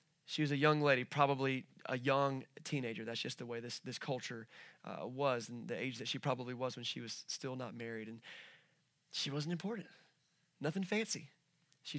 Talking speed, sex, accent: 190 wpm, male, American